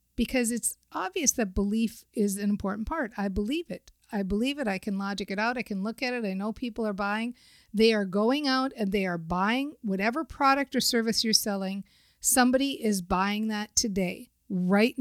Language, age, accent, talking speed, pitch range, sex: English, 50-69, American, 200 wpm, 195-235 Hz, female